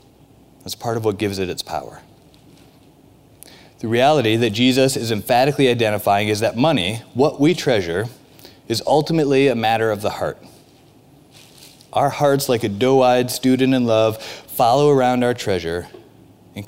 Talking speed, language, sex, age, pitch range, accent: 150 wpm, English, male, 30-49, 110-135 Hz, American